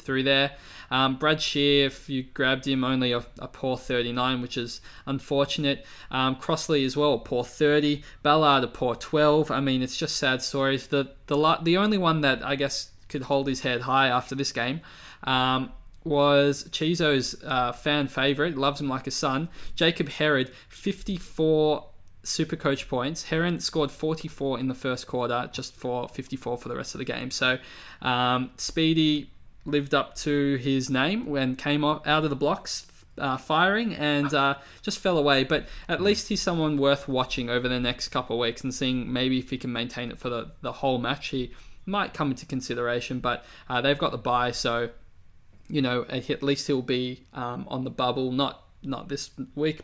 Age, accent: 20-39, Australian